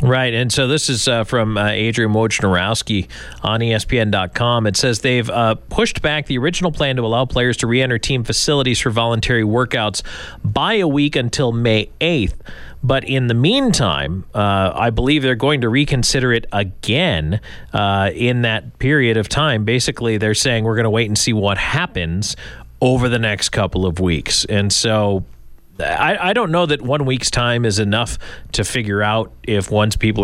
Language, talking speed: English, 180 wpm